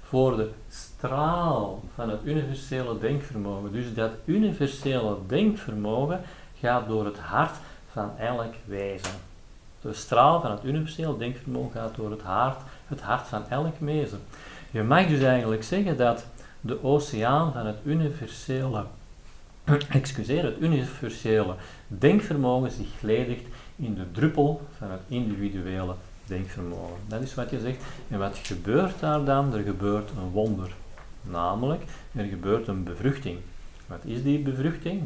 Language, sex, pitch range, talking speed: Dutch, male, 105-145 Hz, 135 wpm